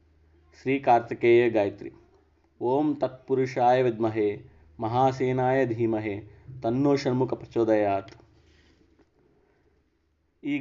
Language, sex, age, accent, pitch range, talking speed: Telugu, male, 30-49, native, 110-130 Hz, 70 wpm